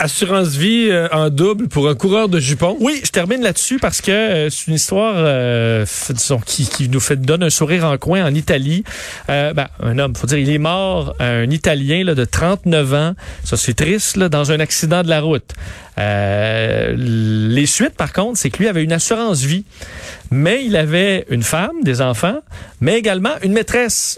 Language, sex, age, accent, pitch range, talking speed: French, male, 40-59, Canadian, 135-195 Hz, 200 wpm